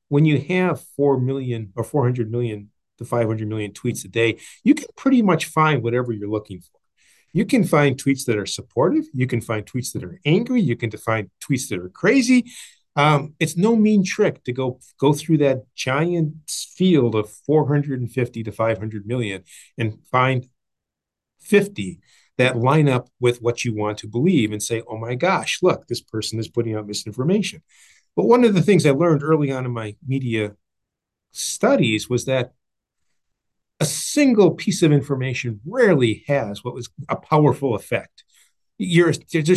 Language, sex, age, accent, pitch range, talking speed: English, male, 50-69, American, 115-160 Hz, 180 wpm